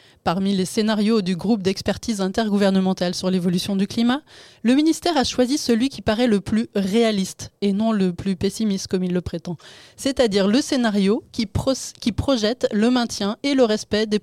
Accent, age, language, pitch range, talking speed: French, 20-39, French, 195-235 Hz, 175 wpm